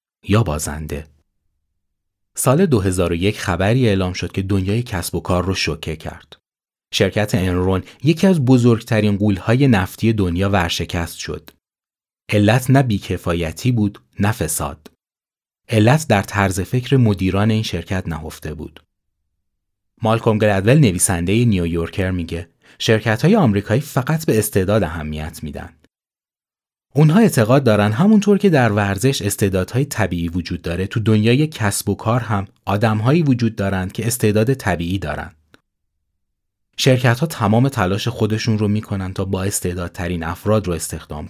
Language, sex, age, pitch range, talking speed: Persian, male, 30-49, 85-115 Hz, 130 wpm